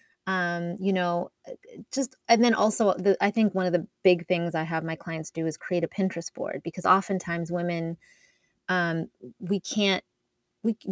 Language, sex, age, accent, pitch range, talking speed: English, female, 30-49, American, 175-200 Hz, 175 wpm